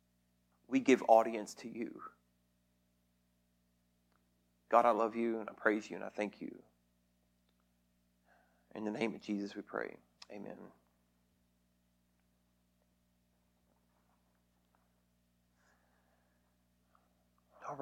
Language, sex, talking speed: English, male, 90 wpm